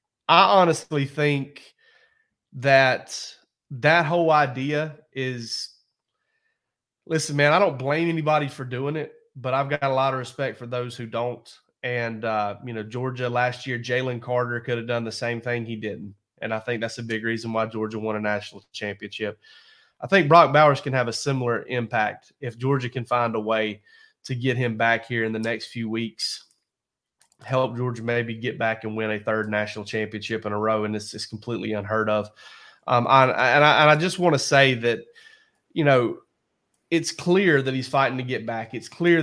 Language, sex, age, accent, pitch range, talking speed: English, male, 30-49, American, 115-145 Hz, 195 wpm